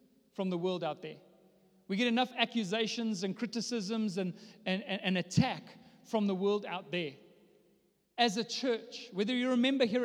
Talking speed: 175 wpm